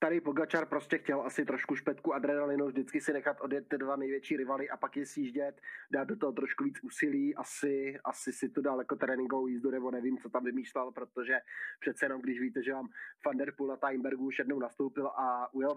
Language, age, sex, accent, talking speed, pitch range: Czech, 20-39, male, native, 215 wpm, 135-155 Hz